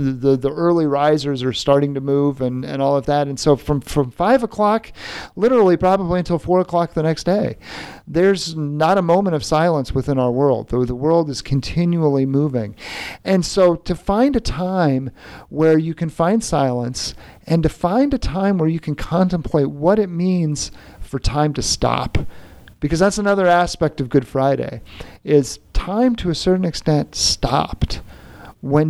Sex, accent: male, American